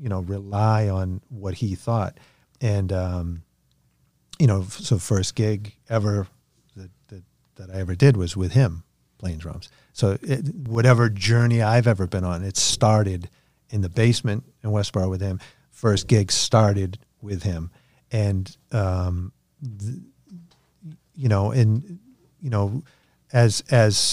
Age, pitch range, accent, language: 50-69, 95-120 Hz, American, English